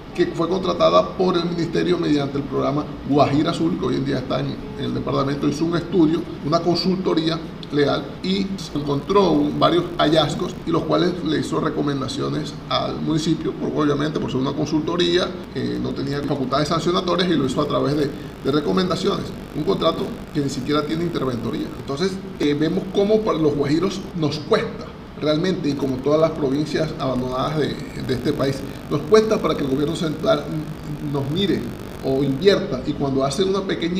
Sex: male